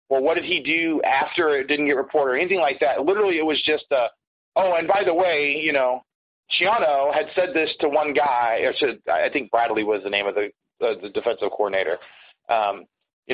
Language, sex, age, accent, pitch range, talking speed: English, male, 30-49, American, 125-190 Hz, 215 wpm